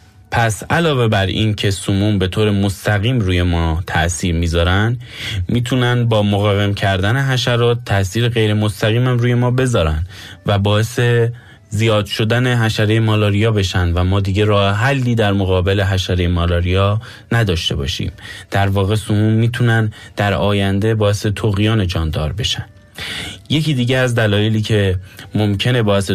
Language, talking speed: Persian, 135 wpm